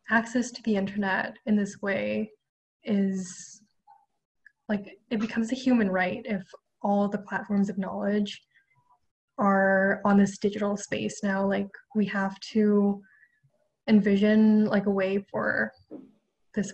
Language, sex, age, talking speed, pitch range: English, female, 10-29, 130 wpm, 195-230 Hz